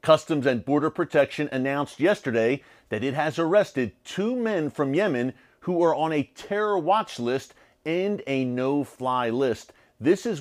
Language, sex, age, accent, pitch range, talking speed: English, male, 40-59, American, 120-155 Hz, 155 wpm